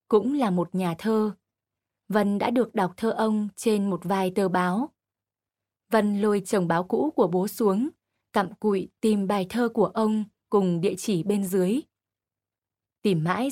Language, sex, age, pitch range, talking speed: Vietnamese, female, 20-39, 175-225 Hz, 170 wpm